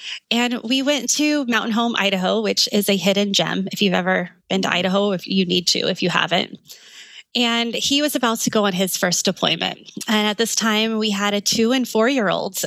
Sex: female